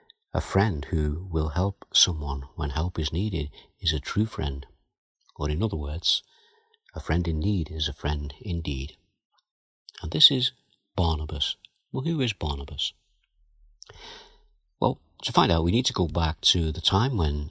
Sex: male